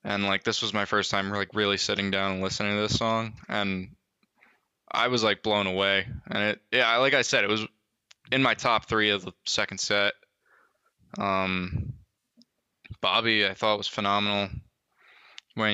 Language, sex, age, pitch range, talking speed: English, male, 20-39, 100-115 Hz, 170 wpm